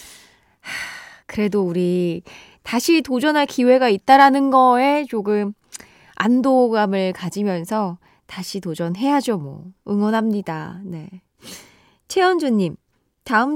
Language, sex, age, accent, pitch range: Korean, female, 20-39, native, 200-295 Hz